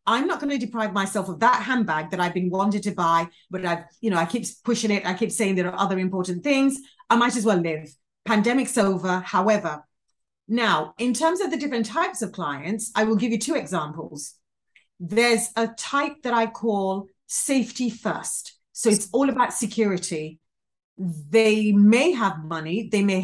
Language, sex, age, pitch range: English, female, 40-59, 185-235 Hz